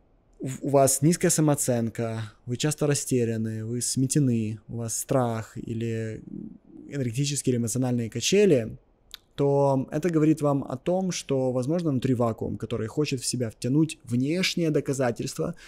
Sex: male